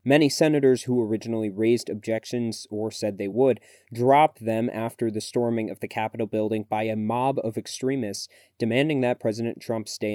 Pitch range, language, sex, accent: 110-125 Hz, English, male, American